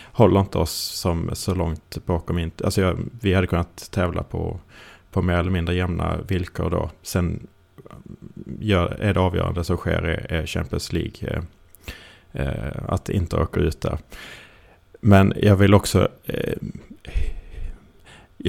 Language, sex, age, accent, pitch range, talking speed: Swedish, male, 30-49, Norwegian, 85-100 Hz, 140 wpm